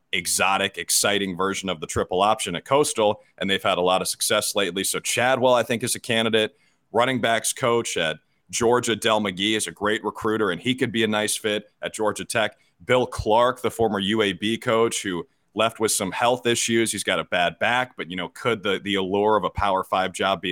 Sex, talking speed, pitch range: male, 220 wpm, 105-125 Hz